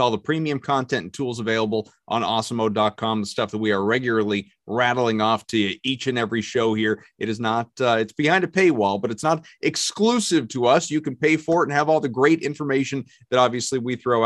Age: 30-49